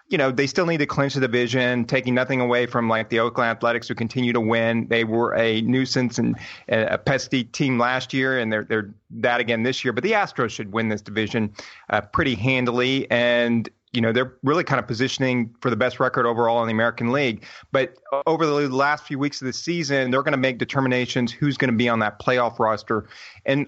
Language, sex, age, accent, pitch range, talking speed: English, male, 30-49, American, 120-145 Hz, 225 wpm